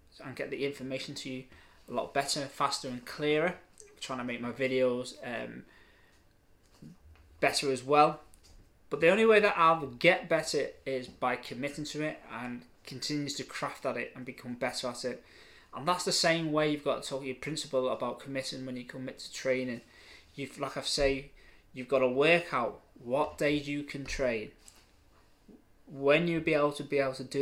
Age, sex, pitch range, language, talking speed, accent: 20-39, male, 130-155 Hz, English, 185 wpm, British